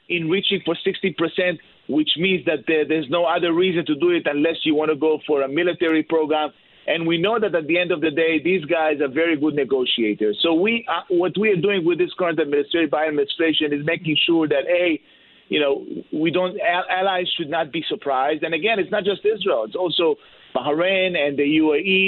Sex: male